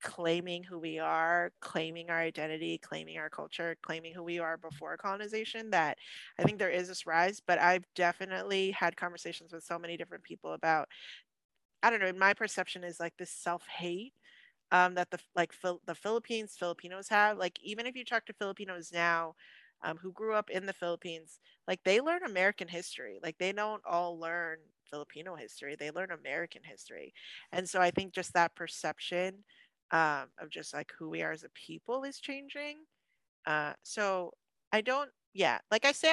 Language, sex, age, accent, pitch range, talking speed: English, female, 30-49, American, 165-210 Hz, 180 wpm